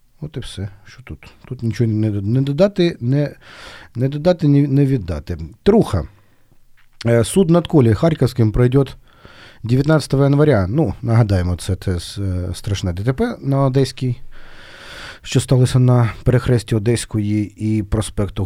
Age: 40-59